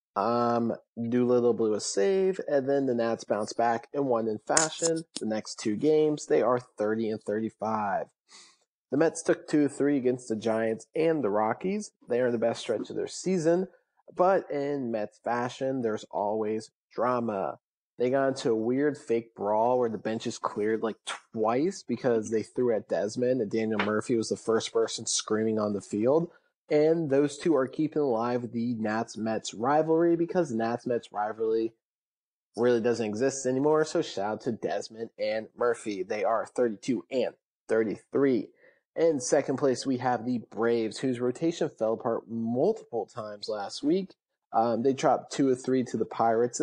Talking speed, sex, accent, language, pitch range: 170 wpm, male, American, English, 110-145 Hz